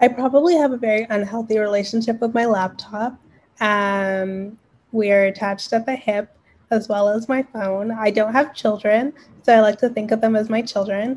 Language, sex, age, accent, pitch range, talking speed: English, female, 10-29, American, 205-240 Hz, 190 wpm